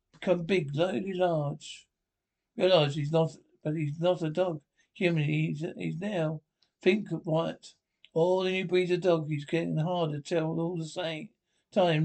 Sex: male